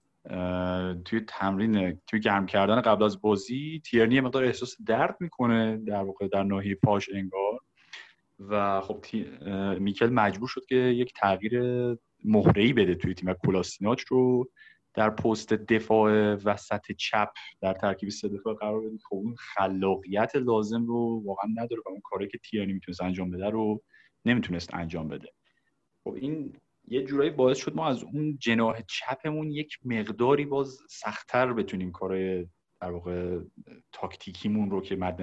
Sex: male